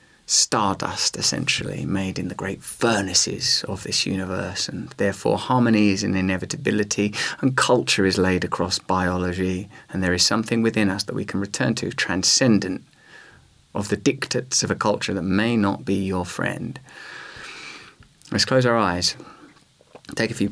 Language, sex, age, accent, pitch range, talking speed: English, male, 30-49, British, 95-115 Hz, 155 wpm